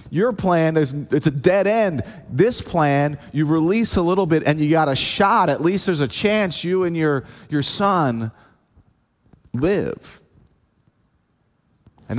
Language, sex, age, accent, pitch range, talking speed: English, male, 30-49, American, 115-160 Hz, 155 wpm